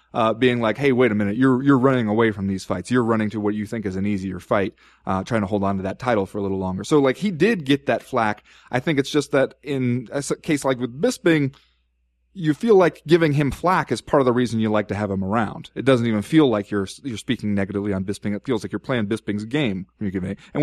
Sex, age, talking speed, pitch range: male, 30-49, 260 wpm, 105-145 Hz